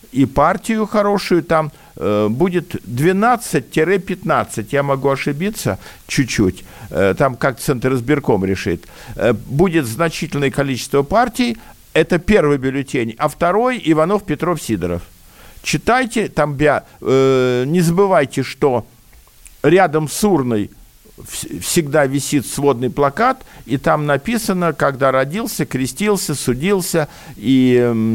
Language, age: Russian, 50-69